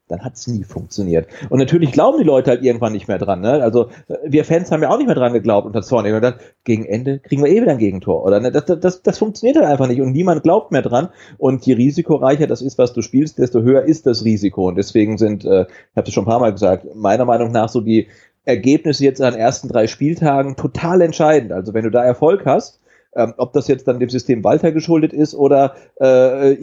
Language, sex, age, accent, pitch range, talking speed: German, male, 30-49, German, 120-150 Hz, 250 wpm